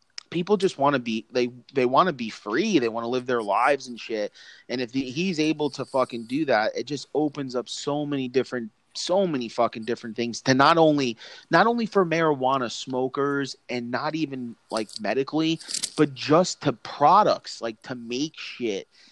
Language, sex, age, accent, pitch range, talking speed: English, male, 30-49, American, 115-140 Hz, 200 wpm